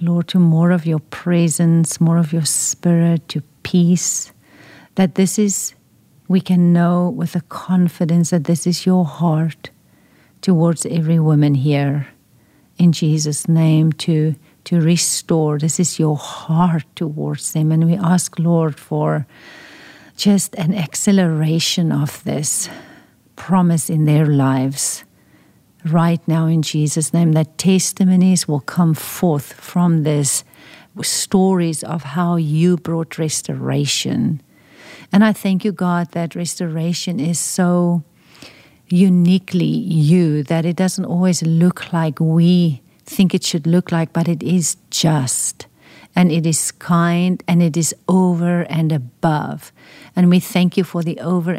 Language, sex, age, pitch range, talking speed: English, female, 50-69, 155-180 Hz, 135 wpm